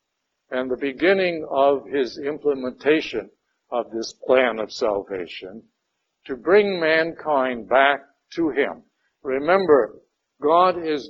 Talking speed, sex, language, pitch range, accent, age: 110 wpm, male, English, 125-175 Hz, American, 60-79